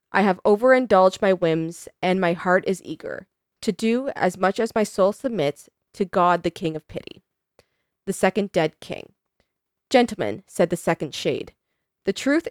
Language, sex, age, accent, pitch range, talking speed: English, female, 20-39, American, 175-225 Hz, 170 wpm